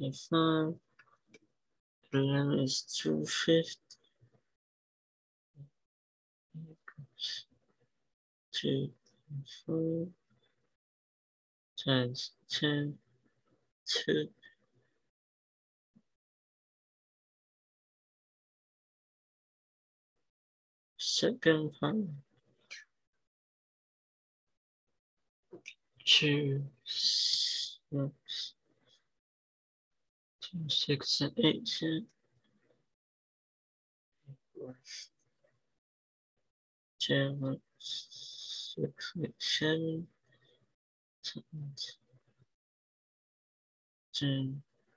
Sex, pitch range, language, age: male, 115-150 Hz, Chinese, 60-79